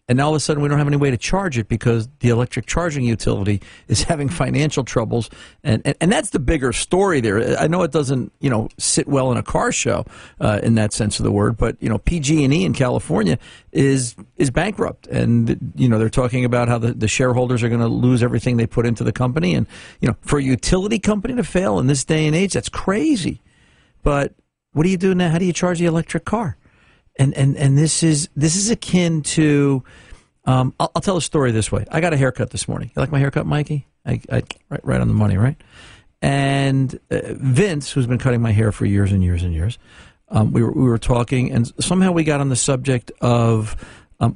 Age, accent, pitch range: 50-69, American, 115-155 Hz